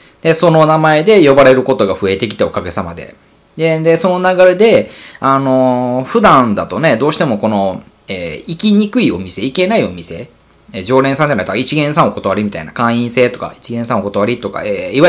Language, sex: Japanese, male